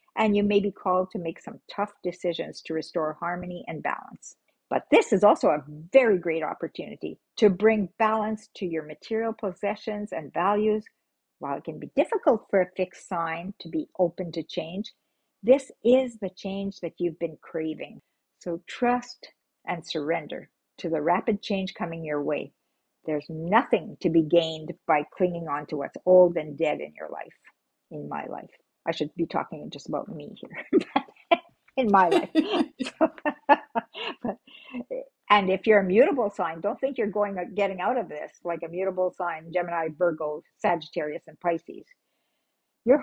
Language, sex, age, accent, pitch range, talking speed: English, female, 50-69, American, 175-230 Hz, 170 wpm